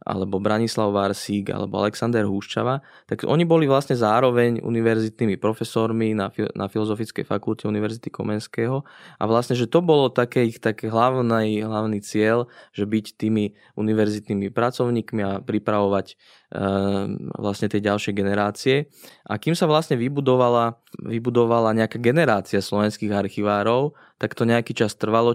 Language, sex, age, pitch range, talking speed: Slovak, male, 20-39, 105-115 Hz, 130 wpm